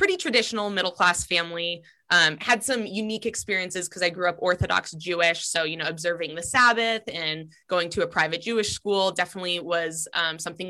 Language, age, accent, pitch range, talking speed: English, 20-39, American, 170-210 Hz, 180 wpm